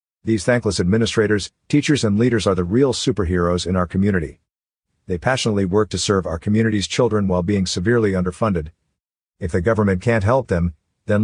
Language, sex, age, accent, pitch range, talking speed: English, male, 50-69, American, 90-115 Hz, 170 wpm